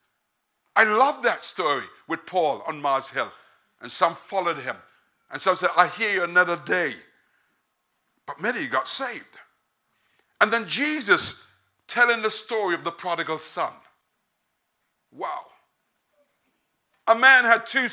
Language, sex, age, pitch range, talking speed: English, male, 60-79, 210-265 Hz, 135 wpm